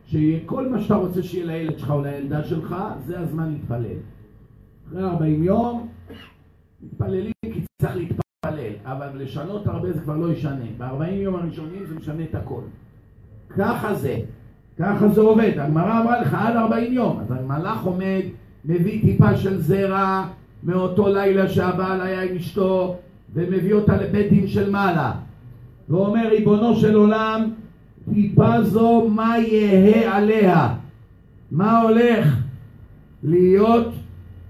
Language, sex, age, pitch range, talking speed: Hebrew, male, 50-69, 125-205 Hz, 130 wpm